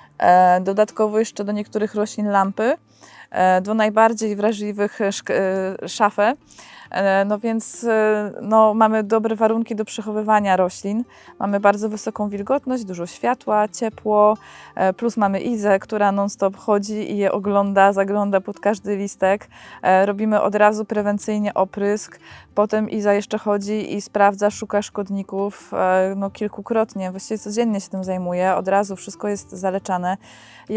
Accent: native